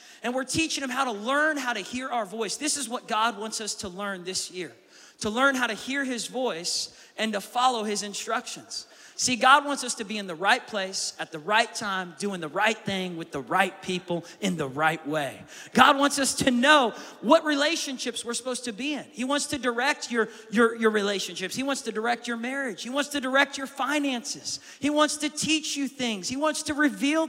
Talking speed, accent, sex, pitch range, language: 225 wpm, American, male, 205-275 Hz, English